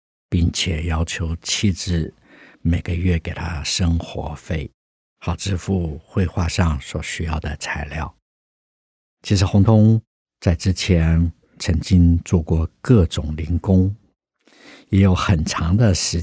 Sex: male